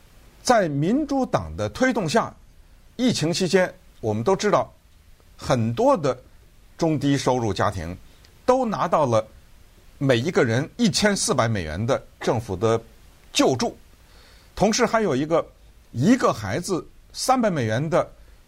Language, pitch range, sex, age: Chinese, 95-150 Hz, male, 50-69